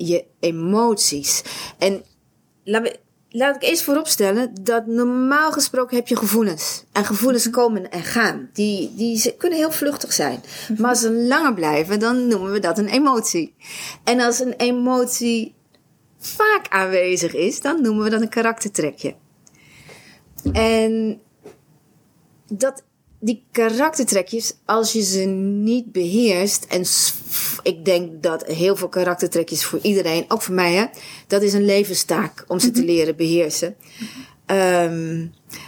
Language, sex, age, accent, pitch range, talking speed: Dutch, female, 30-49, Dutch, 180-235 Hz, 135 wpm